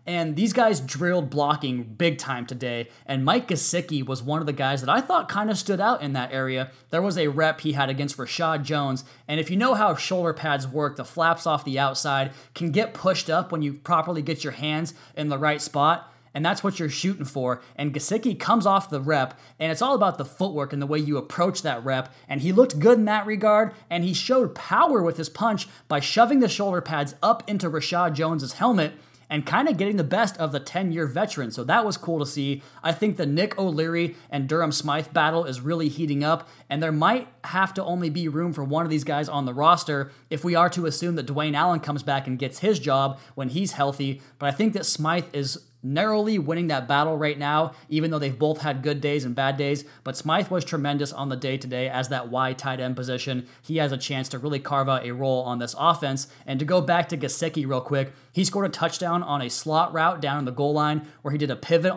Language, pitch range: English, 140-175 Hz